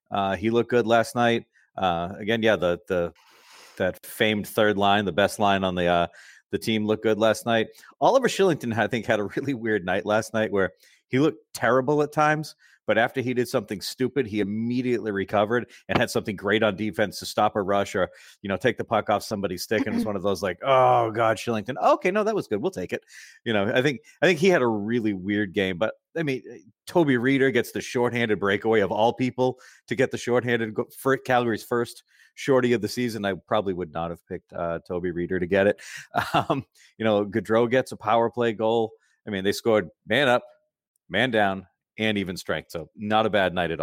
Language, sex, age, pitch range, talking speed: English, male, 30-49, 95-120 Hz, 220 wpm